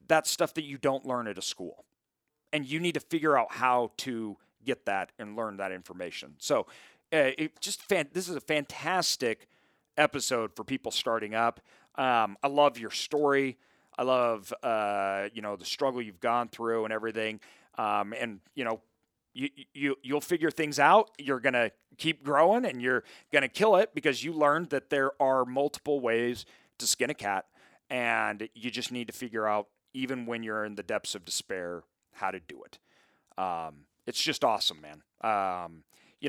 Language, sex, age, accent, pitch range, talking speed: English, male, 40-59, American, 105-145 Hz, 185 wpm